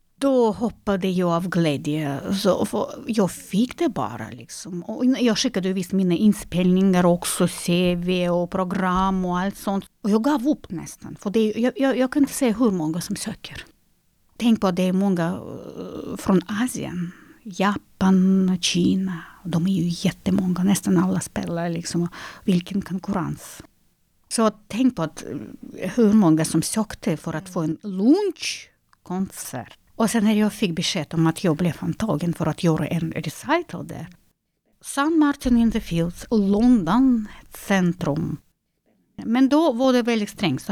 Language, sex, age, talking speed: Swedish, female, 50-69, 160 wpm